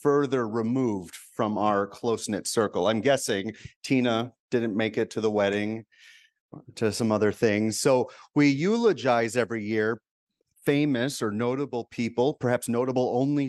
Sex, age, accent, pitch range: male, 30-49, American, 100-130 Hz